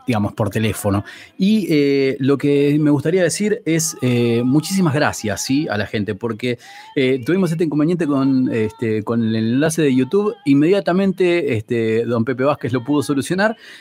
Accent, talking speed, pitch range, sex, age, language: Argentinian, 150 wpm, 115-165 Hz, male, 30-49, Spanish